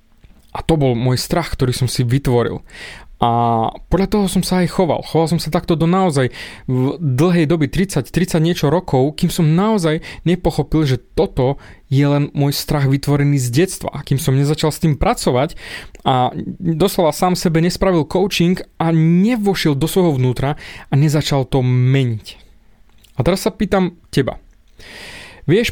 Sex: male